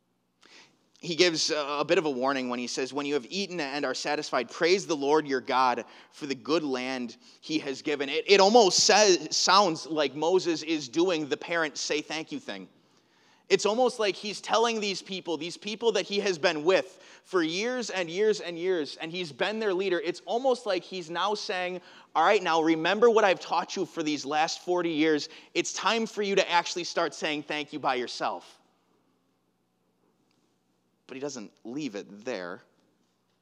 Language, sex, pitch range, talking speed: English, male, 115-185 Hz, 190 wpm